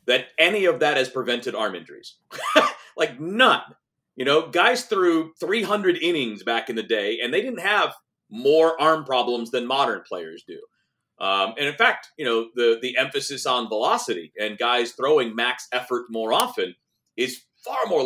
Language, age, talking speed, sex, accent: English, 40-59, 175 wpm, male, American